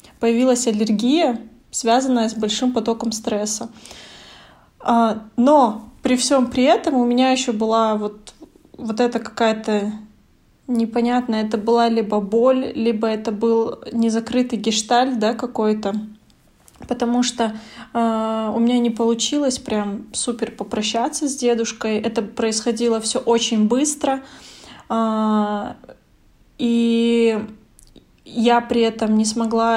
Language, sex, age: Russian, female, 20-39